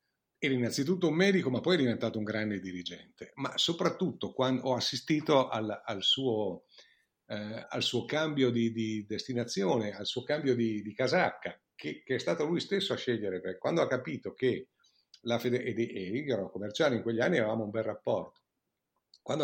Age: 50-69